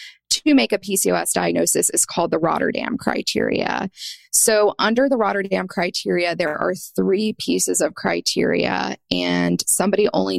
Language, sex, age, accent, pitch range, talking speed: English, female, 20-39, American, 160-205 Hz, 140 wpm